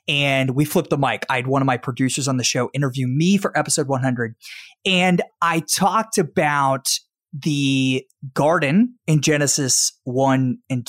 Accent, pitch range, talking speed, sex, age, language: American, 130-185 Hz, 160 wpm, male, 20-39, English